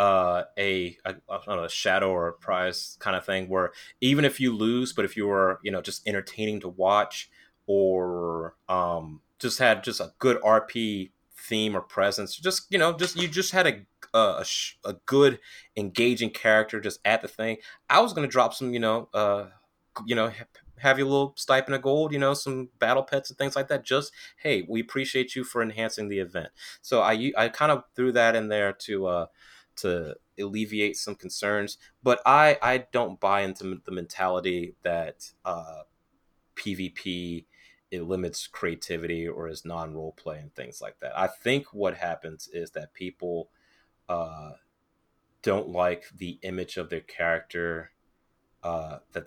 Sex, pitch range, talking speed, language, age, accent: male, 85-115 Hz, 180 wpm, English, 30-49, American